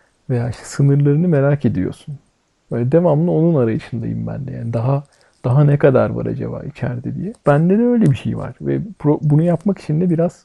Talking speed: 190 wpm